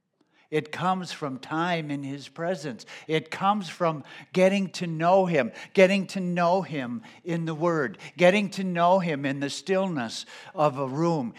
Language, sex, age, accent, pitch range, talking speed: English, male, 60-79, American, 150-185 Hz, 165 wpm